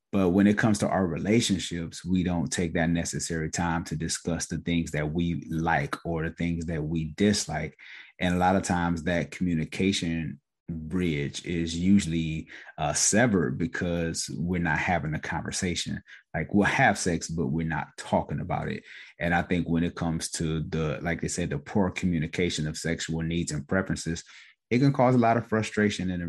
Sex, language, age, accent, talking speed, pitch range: male, English, 30-49, American, 185 wpm, 80-95 Hz